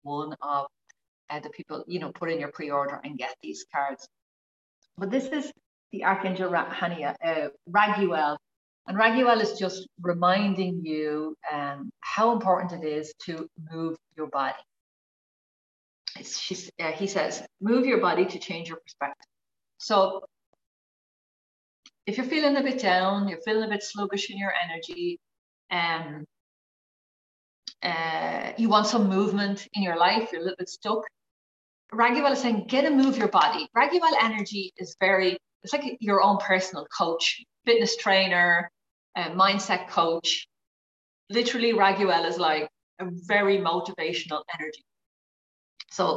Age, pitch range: 40-59, 155-210 Hz